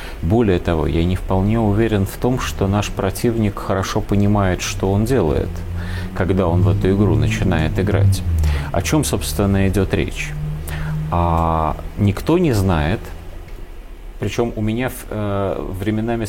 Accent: native